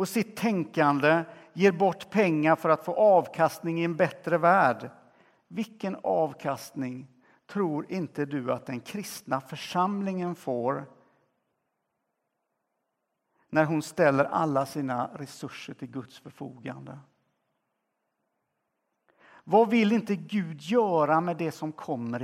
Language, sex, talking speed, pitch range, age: Swedish, male, 115 wpm, 140-195 Hz, 60-79